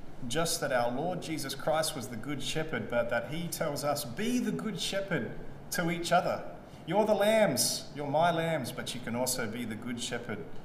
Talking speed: 205 wpm